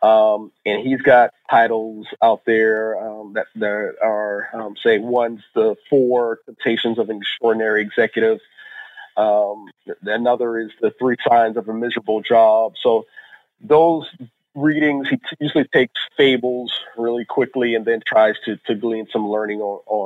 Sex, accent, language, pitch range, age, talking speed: male, American, English, 110-130 Hz, 40-59, 145 wpm